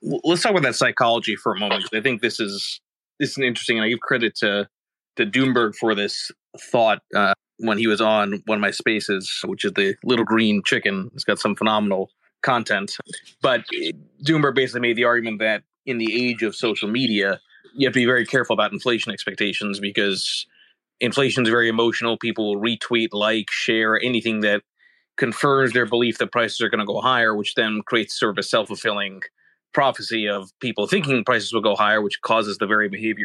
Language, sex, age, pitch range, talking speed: English, male, 30-49, 110-130 Hz, 200 wpm